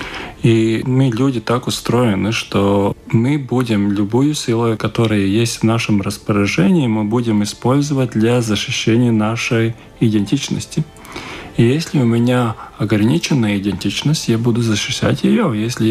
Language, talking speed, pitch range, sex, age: Russian, 125 wpm, 105-130 Hz, male, 20-39